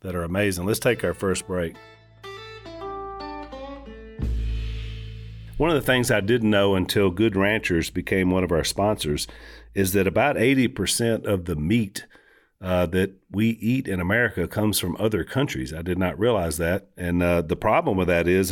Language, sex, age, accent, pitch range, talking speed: English, male, 40-59, American, 85-110 Hz, 170 wpm